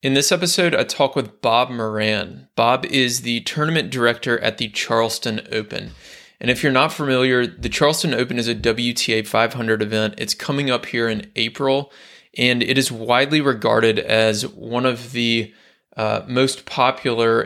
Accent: American